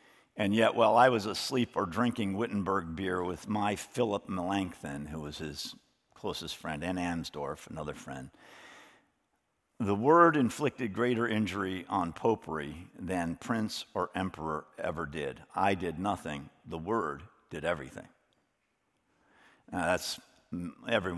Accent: American